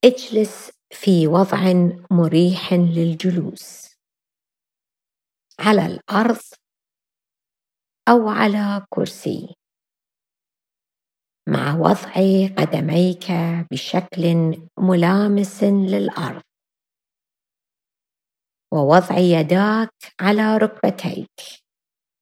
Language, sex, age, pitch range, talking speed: English, female, 30-49, 170-205 Hz, 55 wpm